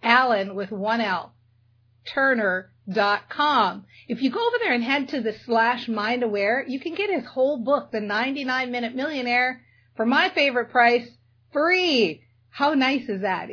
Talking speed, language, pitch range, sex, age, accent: 160 wpm, English, 225-290 Hz, female, 40-59, American